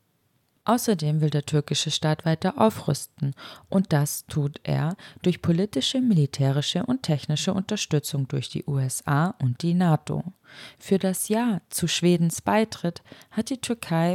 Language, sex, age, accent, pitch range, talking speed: German, female, 20-39, German, 145-180 Hz, 135 wpm